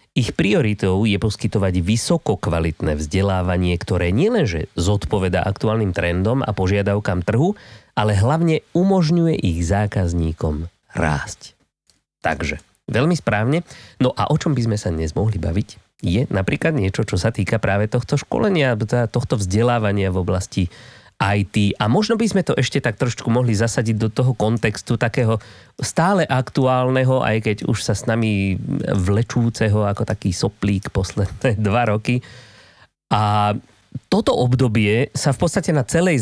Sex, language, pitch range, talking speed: male, Slovak, 100-130 Hz, 140 wpm